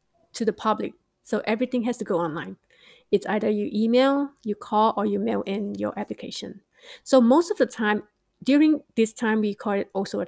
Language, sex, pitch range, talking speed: English, female, 200-230 Hz, 200 wpm